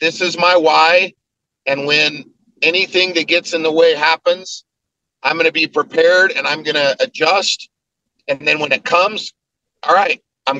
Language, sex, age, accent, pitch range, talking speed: English, male, 50-69, American, 145-180 Hz, 175 wpm